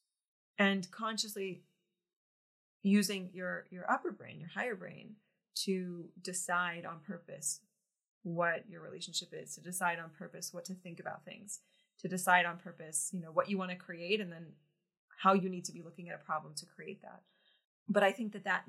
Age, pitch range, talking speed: 20-39, 175-200 Hz, 185 wpm